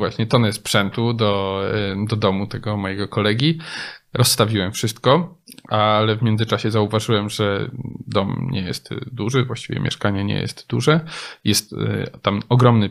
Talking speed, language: 130 wpm, Polish